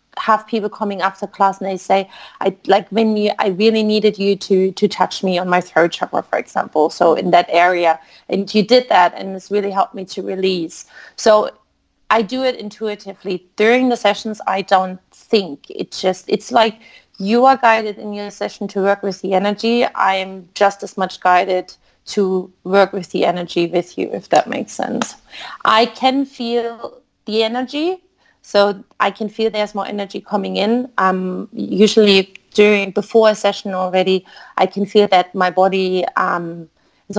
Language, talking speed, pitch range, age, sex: English, 180 wpm, 190-220 Hz, 30-49, female